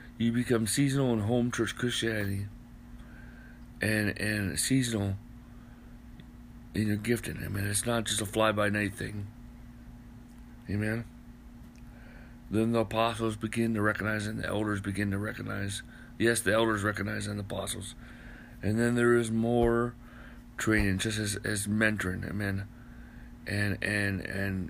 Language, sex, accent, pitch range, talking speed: English, male, American, 105-120 Hz, 140 wpm